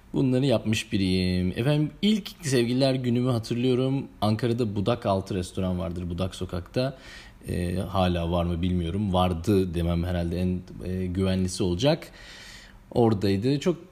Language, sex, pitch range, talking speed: Turkish, male, 95-120 Hz, 125 wpm